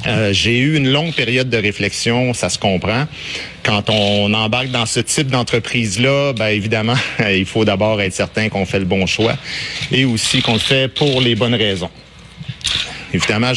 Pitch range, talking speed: 100-125 Hz, 175 wpm